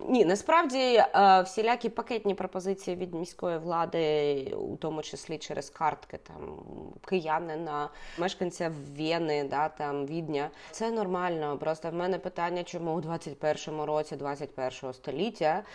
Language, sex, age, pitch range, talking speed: Ukrainian, female, 20-39, 160-200 Hz, 120 wpm